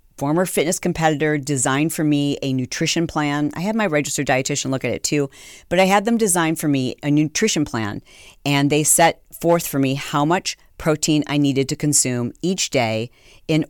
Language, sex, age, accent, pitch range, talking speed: English, female, 40-59, American, 135-170 Hz, 195 wpm